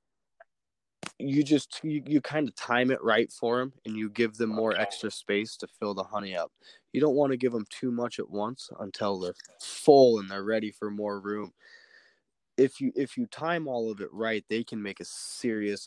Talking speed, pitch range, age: 210 wpm, 105-125 Hz, 20-39